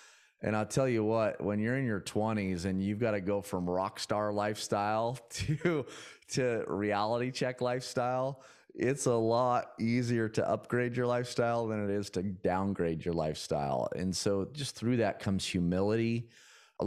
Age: 30-49